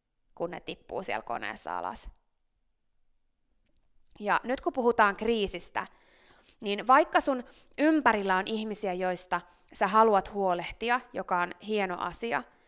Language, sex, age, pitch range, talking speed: Finnish, female, 20-39, 185-245 Hz, 120 wpm